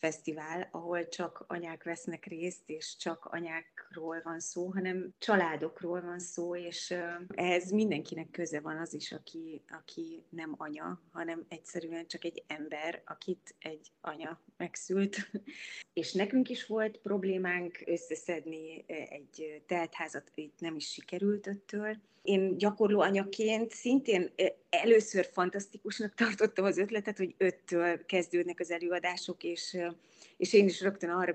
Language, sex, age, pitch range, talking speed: Hungarian, female, 30-49, 165-195 Hz, 130 wpm